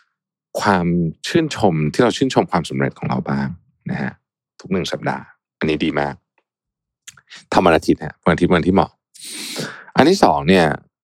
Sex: male